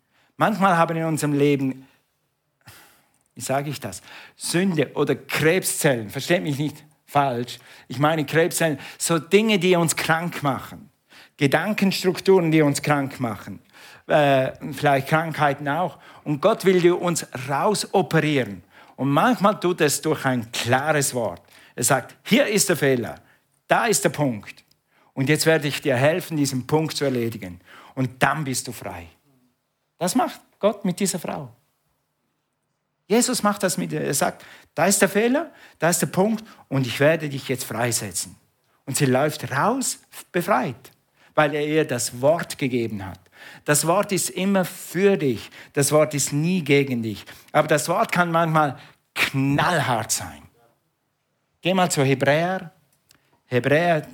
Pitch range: 130-175 Hz